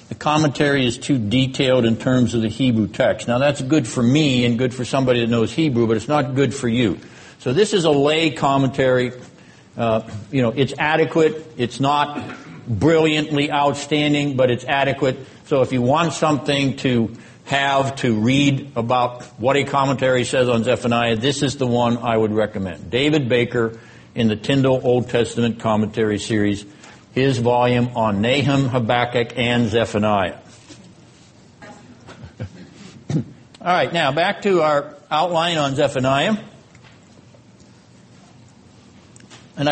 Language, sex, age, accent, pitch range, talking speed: English, male, 60-79, American, 115-145 Hz, 145 wpm